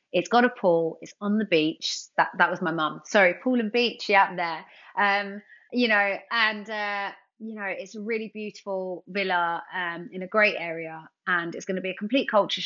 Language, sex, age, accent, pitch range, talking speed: English, female, 30-49, British, 170-210 Hz, 220 wpm